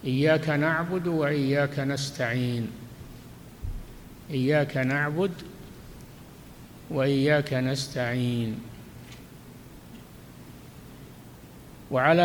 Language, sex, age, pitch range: Arabic, male, 60-79, 130-155 Hz